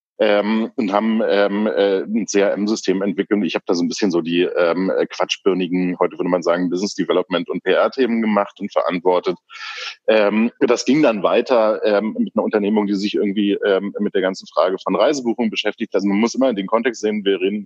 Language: German